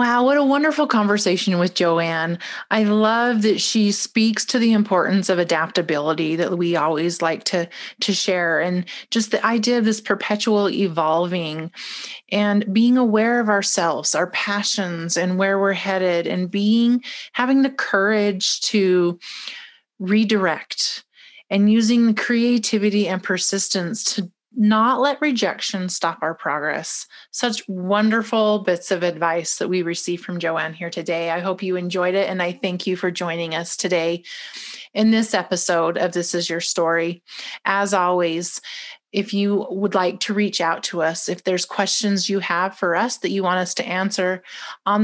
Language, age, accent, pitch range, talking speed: English, 30-49, American, 175-215 Hz, 160 wpm